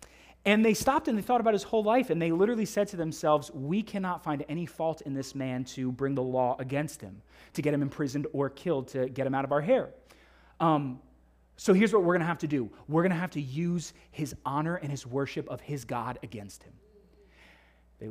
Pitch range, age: 135-210 Hz, 30-49